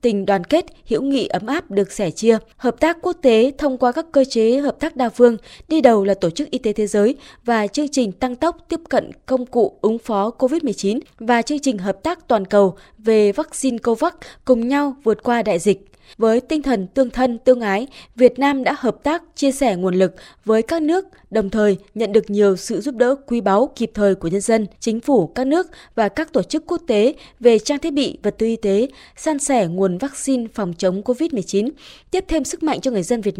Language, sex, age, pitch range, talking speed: Vietnamese, female, 20-39, 205-275 Hz, 230 wpm